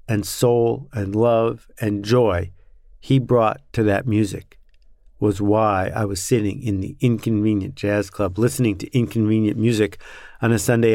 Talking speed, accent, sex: 155 wpm, American, male